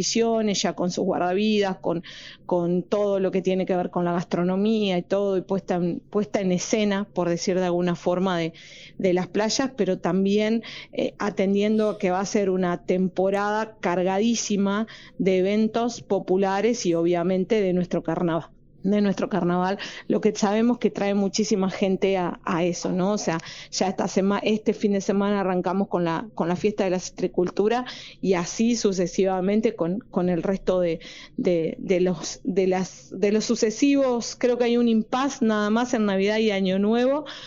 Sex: female